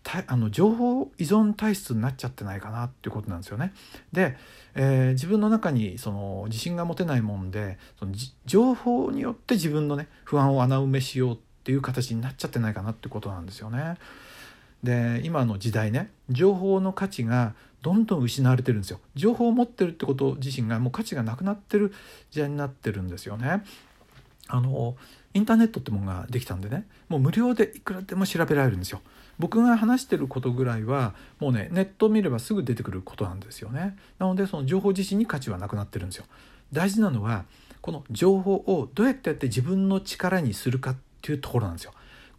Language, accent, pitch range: Japanese, native, 115-195 Hz